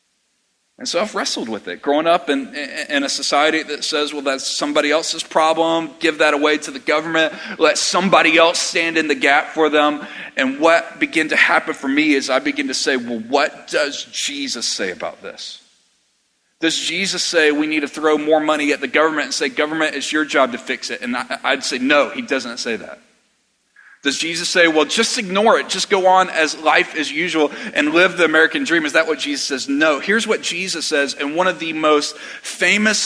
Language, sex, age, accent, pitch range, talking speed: English, male, 40-59, American, 155-200 Hz, 210 wpm